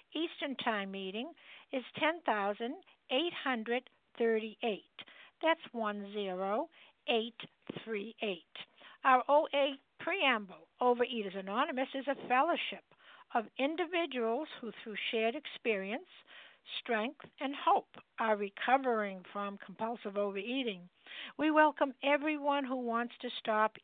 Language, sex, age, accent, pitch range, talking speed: English, female, 60-79, American, 215-285 Hz, 90 wpm